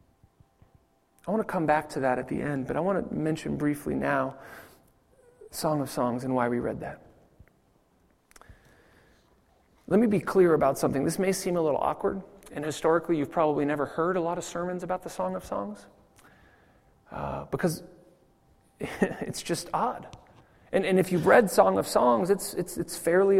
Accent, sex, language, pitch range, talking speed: American, male, English, 145-190 Hz, 175 wpm